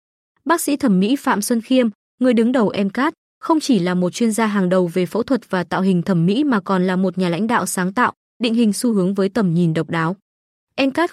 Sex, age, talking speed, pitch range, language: female, 20-39, 250 wpm, 185-245 Hz, Vietnamese